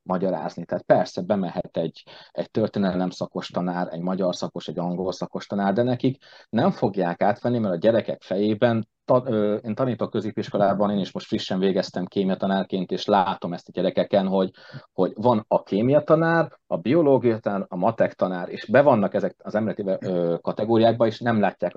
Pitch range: 95-125 Hz